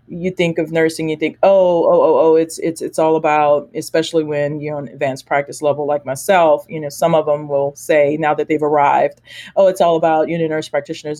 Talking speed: 230 wpm